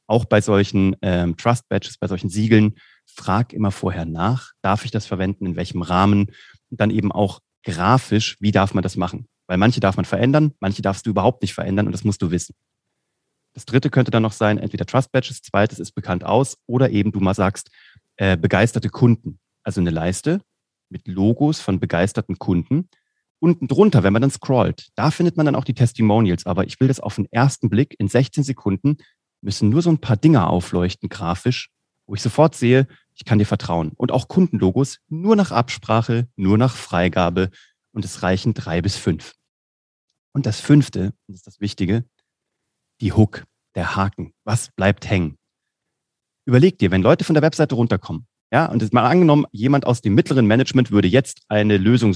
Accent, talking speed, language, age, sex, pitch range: German, 190 wpm, German, 30-49, male, 95-130 Hz